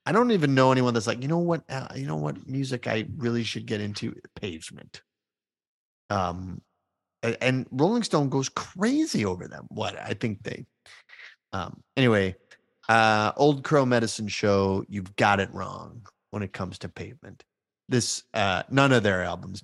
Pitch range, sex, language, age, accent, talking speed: 95-125 Hz, male, English, 30-49, American, 170 wpm